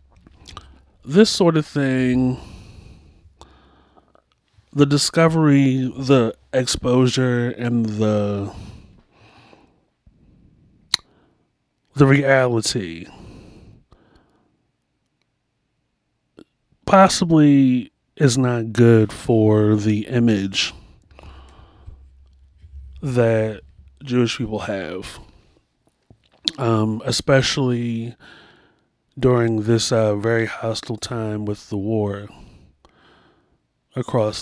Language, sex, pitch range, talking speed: English, male, 105-125 Hz, 60 wpm